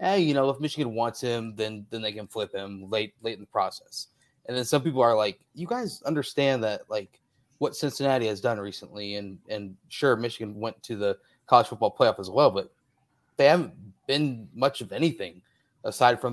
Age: 30-49